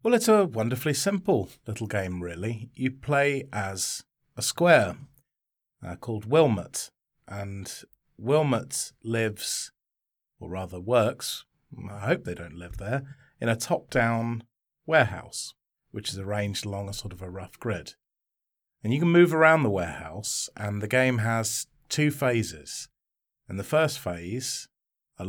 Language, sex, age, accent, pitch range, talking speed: English, male, 40-59, British, 100-135 Hz, 140 wpm